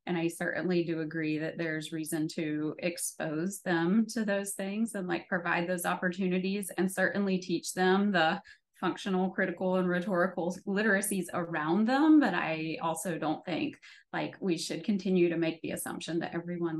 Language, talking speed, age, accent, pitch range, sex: English, 165 wpm, 20-39, American, 165-190 Hz, female